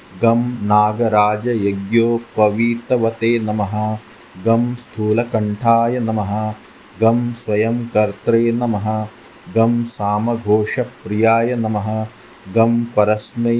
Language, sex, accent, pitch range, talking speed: Hindi, male, native, 105-120 Hz, 60 wpm